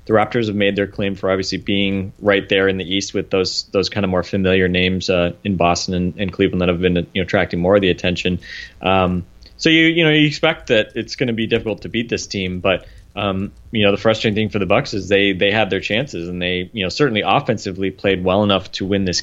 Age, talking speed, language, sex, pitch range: 30-49, 260 wpm, English, male, 90-105 Hz